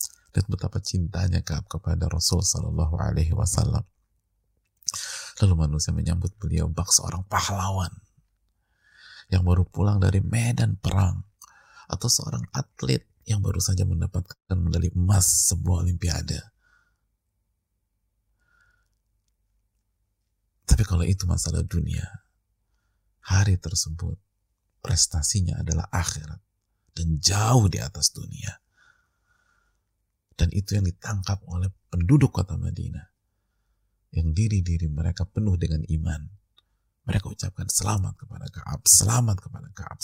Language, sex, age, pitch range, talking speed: Indonesian, male, 30-49, 90-100 Hz, 100 wpm